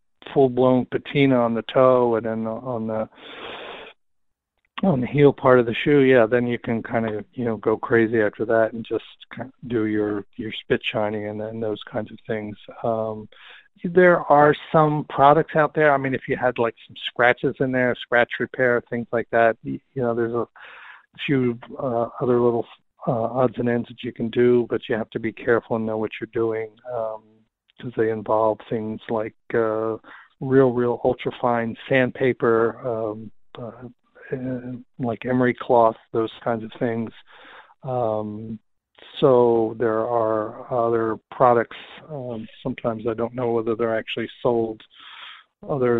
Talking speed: 170 wpm